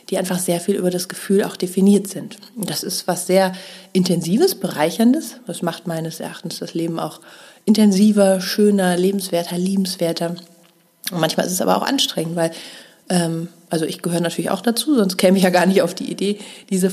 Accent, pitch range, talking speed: German, 175-210 Hz, 185 wpm